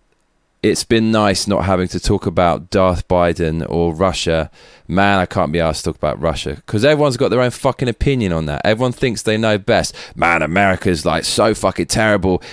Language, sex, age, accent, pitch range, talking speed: English, male, 20-39, British, 85-115 Hz, 195 wpm